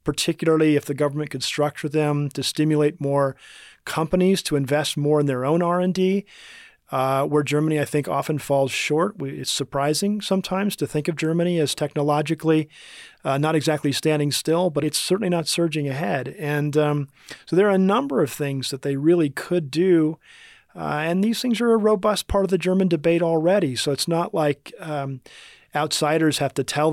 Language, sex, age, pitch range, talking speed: English, male, 40-59, 140-160 Hz, 180 wpm